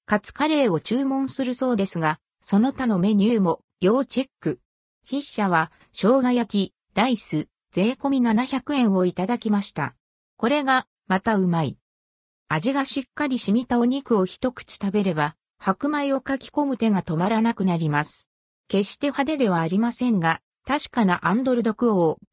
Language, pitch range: Japanese, 180-255 Hz